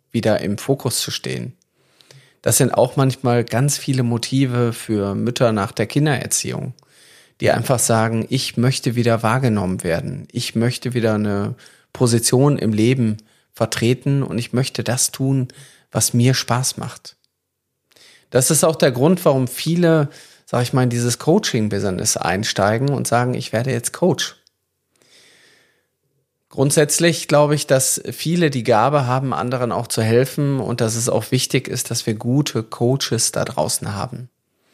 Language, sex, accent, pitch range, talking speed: German, male, German, 115-145 Hz, 150 wpm